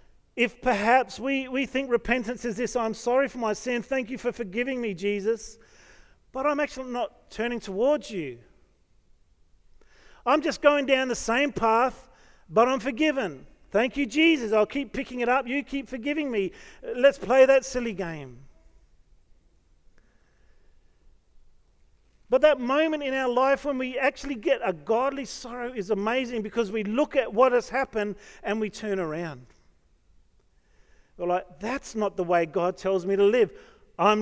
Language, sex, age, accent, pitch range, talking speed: English, male, 40-59, Australian, 180-260 Hz, 160 wpm